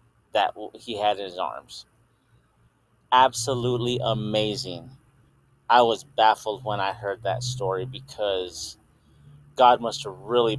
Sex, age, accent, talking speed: male, 30-49, American, 120 wpm